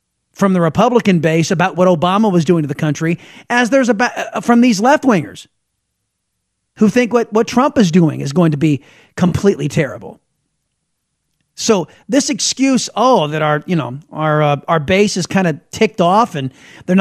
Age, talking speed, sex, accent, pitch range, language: 40-59, 185 wpm, male, American, 160-215 Hz, English